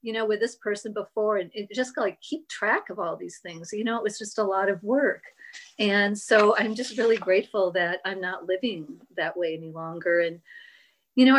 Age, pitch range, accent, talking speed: 40-59, 175-215 Hz, American, 210 wpm